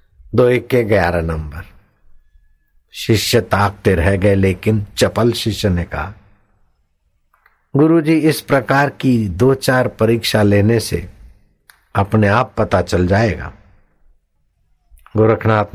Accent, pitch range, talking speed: native, 80-115 Hz, 110 wpm